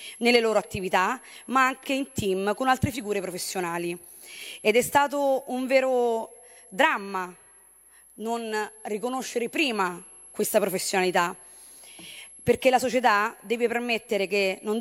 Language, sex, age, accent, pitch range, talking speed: Italian, female, 20-39, native, 200-245 Hz, 115 wpm